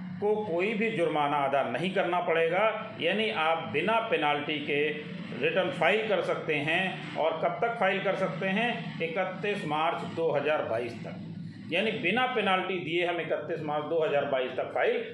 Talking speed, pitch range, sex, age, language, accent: 170 wpm, 150-205 Hz, male, 40-59, Hindi, native